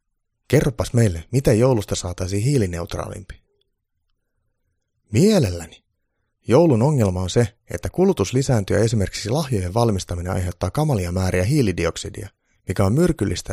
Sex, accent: male, native